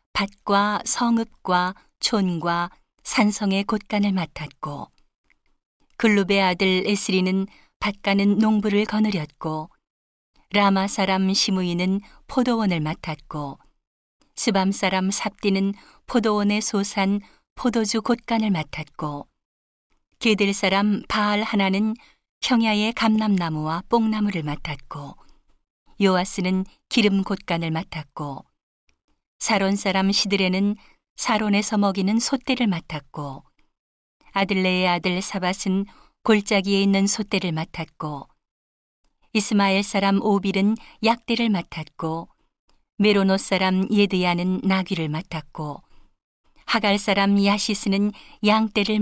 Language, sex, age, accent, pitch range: Korean, female, 40-59, native, 180-210 Hz